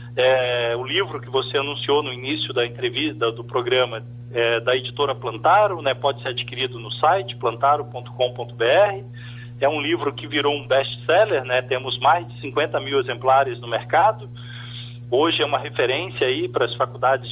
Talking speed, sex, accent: 150 wpm, male, Brazilian